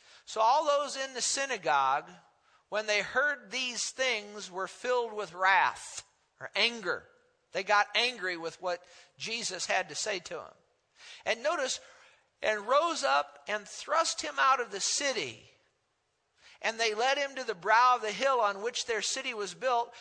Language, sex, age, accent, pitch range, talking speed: English, male, 50-69, American, 190-245 Hz, 170 wpm